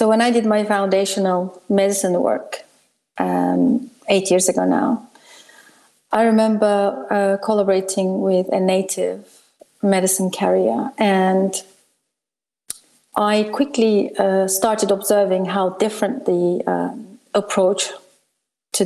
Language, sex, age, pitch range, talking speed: English, female, 30-49, 190-225 Hz, 110 wpm